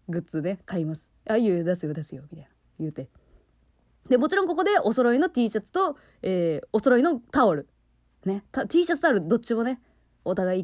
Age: 20-39